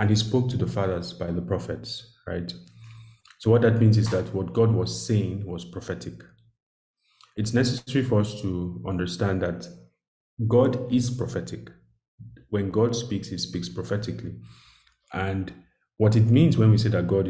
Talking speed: 165 wpm